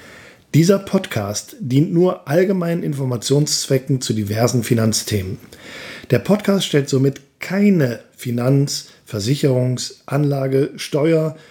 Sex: male